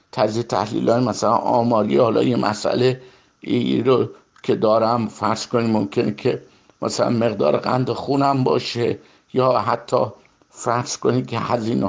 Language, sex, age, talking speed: Persian, male, 50-69, 135 wpm